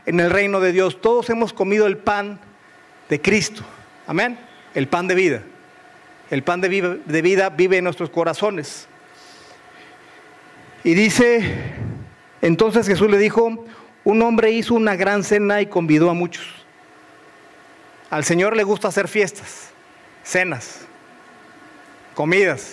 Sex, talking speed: male, 130 wpm